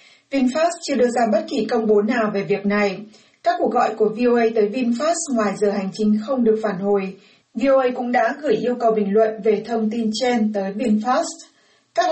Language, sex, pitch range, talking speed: Vietnamese, female, 215-250 Hz, 210 wpm